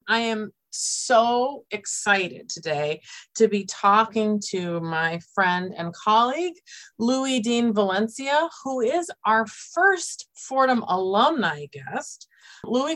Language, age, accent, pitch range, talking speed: English, 40-59, American, 190-240 Hz, 110 wpm